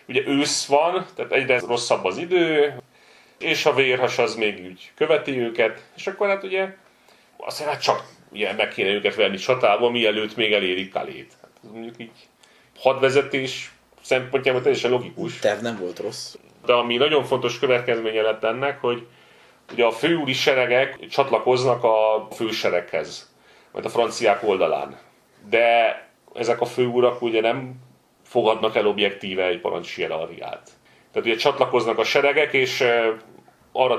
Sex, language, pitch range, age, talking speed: male, Hungarian, 115-140 Hz, 30-49, 145 wpm